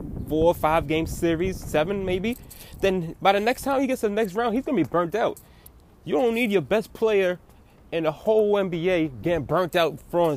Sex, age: male, 20-39